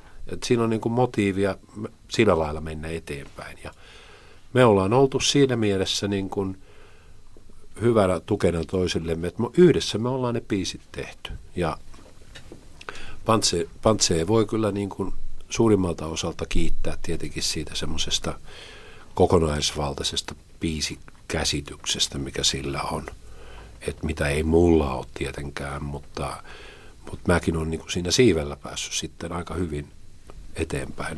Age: 50-69